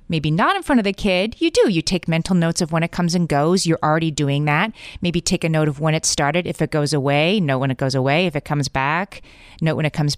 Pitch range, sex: 150-195 Hz, female